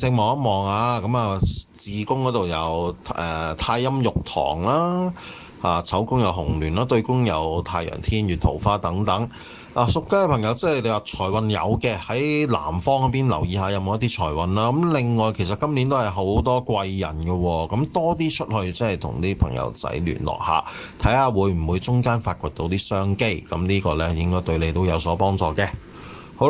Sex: male